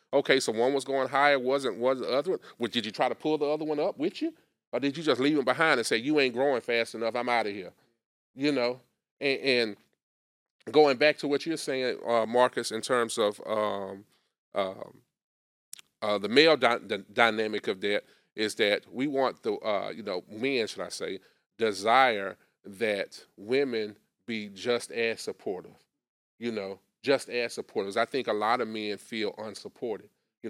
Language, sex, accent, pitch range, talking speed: English, male, American, 110-145 Hz, 185 wpm